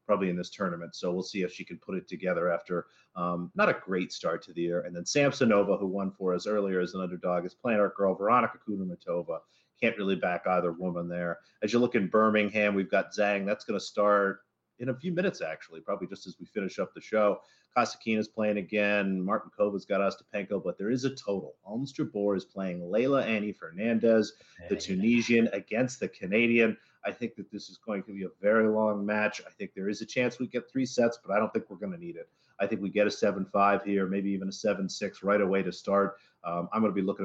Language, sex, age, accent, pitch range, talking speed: English, male, 30-49, American, 95-110 Hz, 240 wpm